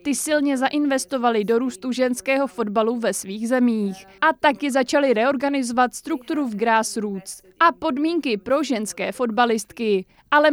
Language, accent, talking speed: Czech, native, 130 wpm